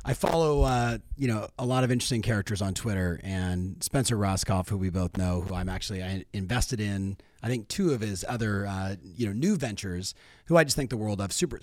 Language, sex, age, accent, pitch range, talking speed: English, male, 30-49, American, 110-160 Hz, 220 wpm